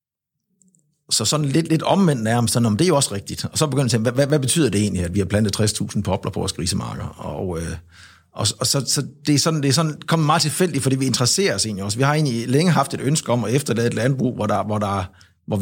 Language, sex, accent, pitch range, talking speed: Danish, male, native, 105-140 Hz, 265 wpm